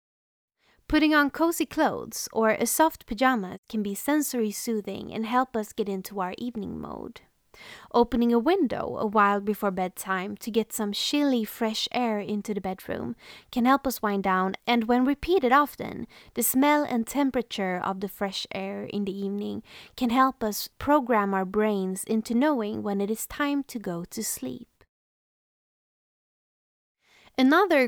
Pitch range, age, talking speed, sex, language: 205-265 Hz, 20-39, 155 wpm, female, English